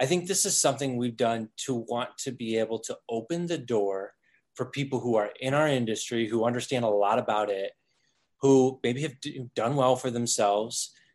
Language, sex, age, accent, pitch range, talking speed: English, male, 20-39, American, 110-130 Hz, 195 wpm